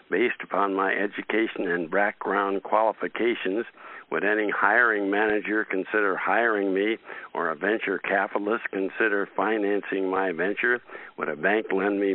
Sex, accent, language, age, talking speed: male, American, English, 60-79, 135 wpm